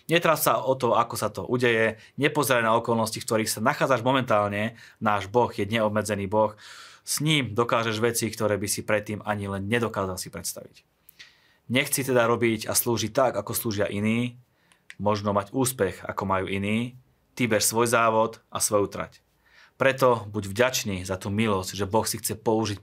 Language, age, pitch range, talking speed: Slovak, 30-49, 105-125 Hz, 175 wpm